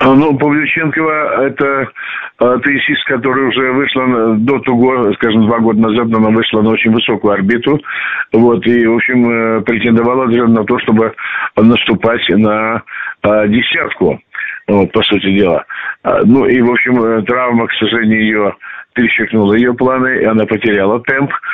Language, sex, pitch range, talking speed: Russian, male, 110-130 Hz, 140 wpm